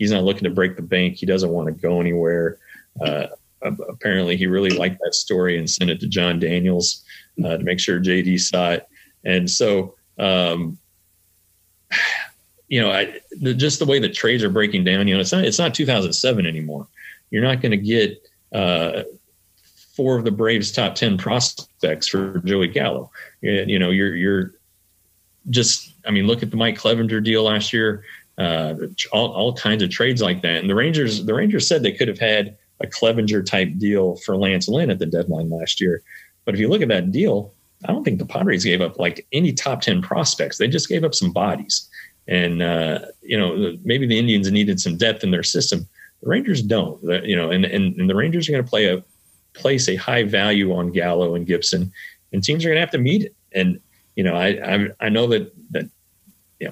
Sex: male